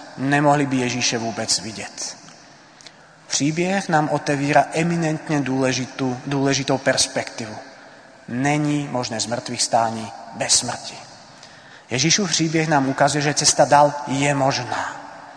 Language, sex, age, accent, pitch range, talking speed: Czech, male, 30-49, native, 125-150 Hz, 105 wpm